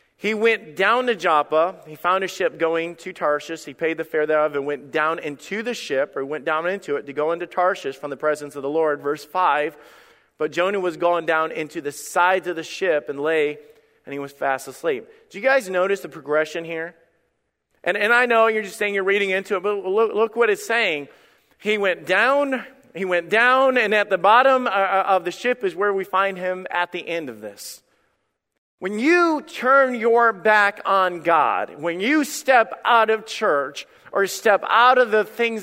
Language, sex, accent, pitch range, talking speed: English, male, American, 165-225 Hz, 210 wpm